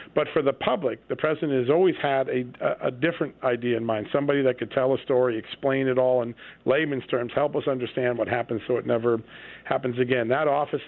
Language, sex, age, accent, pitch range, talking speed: English, male, 50-69, American, 120-140 Hz, 215 wpm